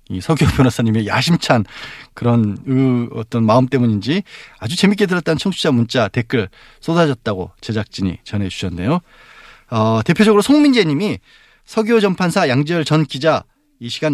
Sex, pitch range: male, 110-170 Hz